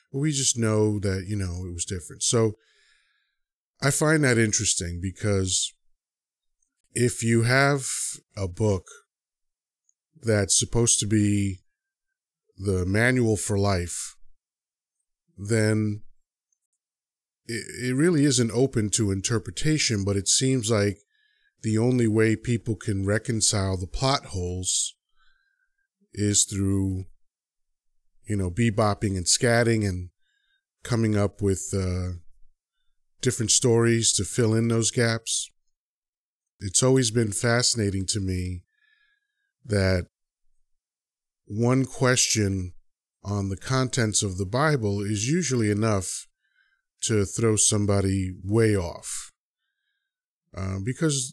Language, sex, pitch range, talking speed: English, male, 100-125 Hz, 110 wpm